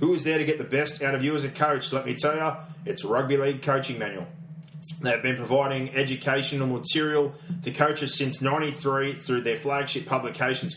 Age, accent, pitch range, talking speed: 20-39, Australian, 125-150 Hz, 195 wpm